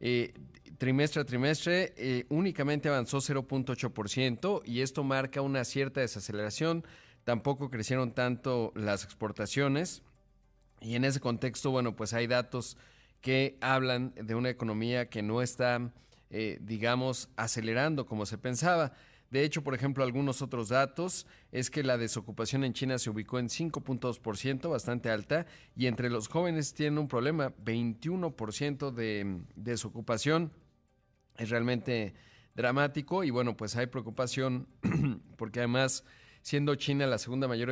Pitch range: 115-135 Hz